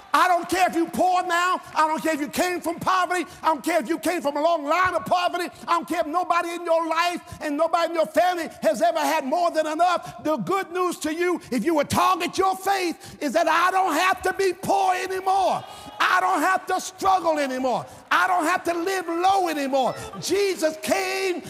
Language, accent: English, American